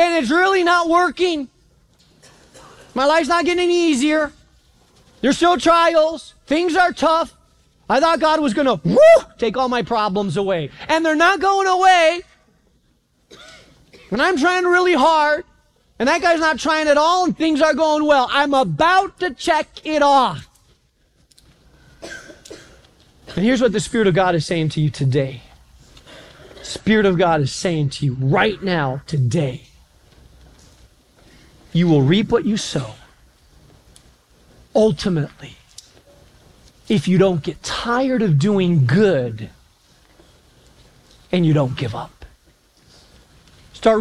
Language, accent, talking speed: English, American, 135 wpm